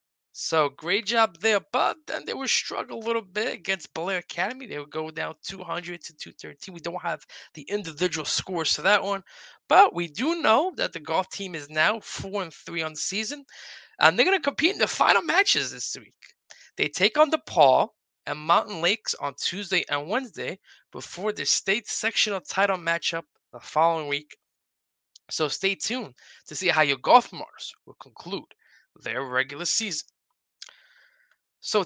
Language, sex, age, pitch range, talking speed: English, male, 20-39, 150-205 Hz, 175 wpm